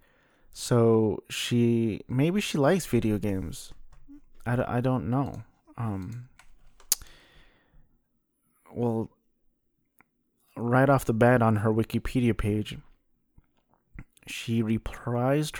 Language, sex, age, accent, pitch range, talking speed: English, male, 30-49, American, 110-125 Hz, 90 wpm